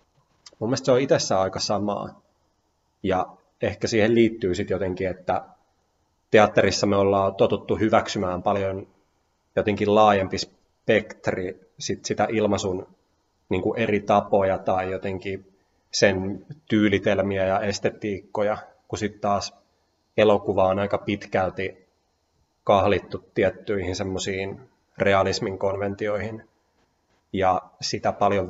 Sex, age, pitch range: male, 30-49, 95-105 Hz